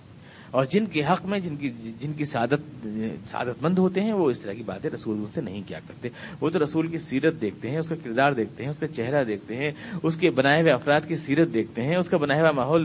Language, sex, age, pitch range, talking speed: Urdu, male, 50-69, 140-195 Hz, 255 wpm